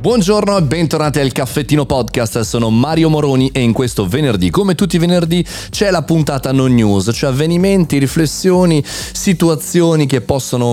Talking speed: 155 wpm